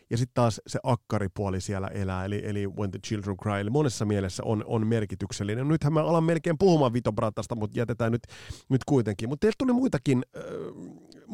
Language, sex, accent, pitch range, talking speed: Finnish, male, native, 105-140 Hz, 185 wpm